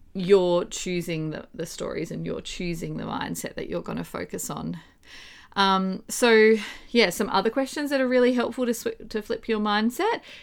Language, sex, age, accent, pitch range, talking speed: English, female, 30-49, Australian, 170-225 Hz, 180 wpm